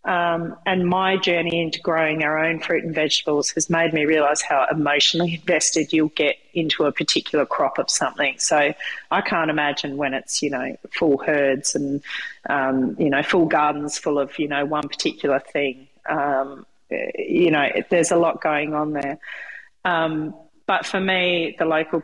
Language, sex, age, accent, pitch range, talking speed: English, female, 40-59, Australian, 150-175 Hz, 175 wpm